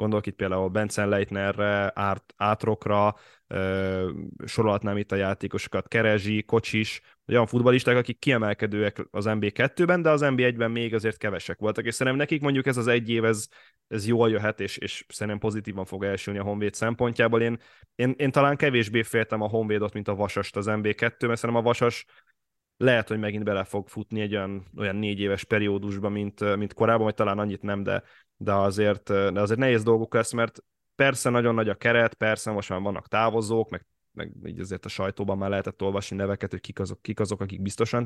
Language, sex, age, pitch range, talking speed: Hungarian, male, 20-39, 100-120 Hz, 185 wpm